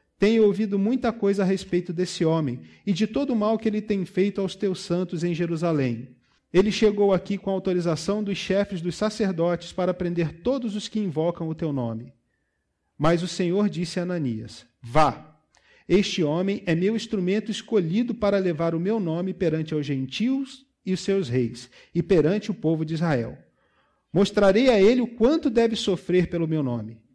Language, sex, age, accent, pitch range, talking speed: Portuguese, male, 40-59, Brazilian, 160-210 Hz, 180 wpm